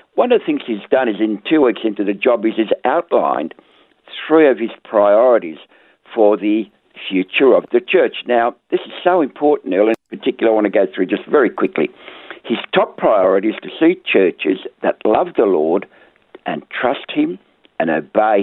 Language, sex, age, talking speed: English, male, 60-79, 190 wpm